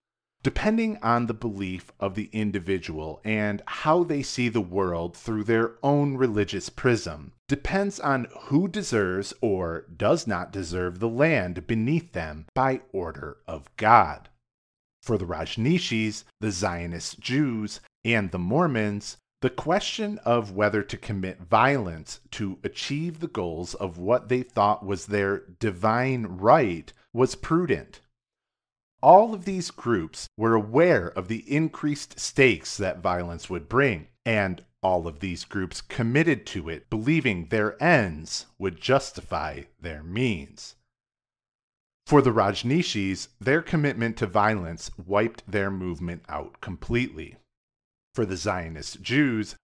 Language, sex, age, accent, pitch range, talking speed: English, male, 40-59, American, 95-130 Hz, 130 wpm